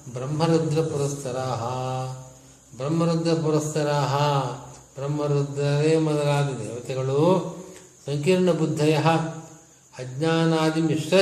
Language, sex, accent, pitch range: Kannada, male, native, 135-165 Hz